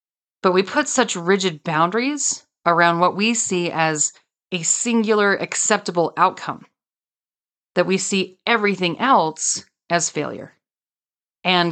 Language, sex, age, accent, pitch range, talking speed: English, female, 30-49, American, 170-215 Hz, 120 wpm